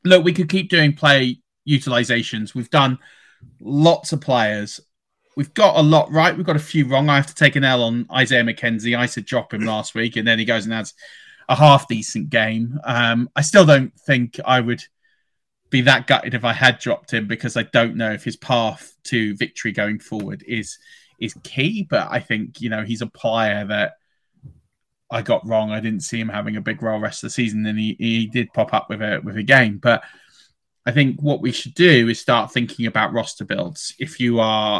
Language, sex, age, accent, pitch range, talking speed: English, male, 20-39, British, 115-145 Hz, 220 wpm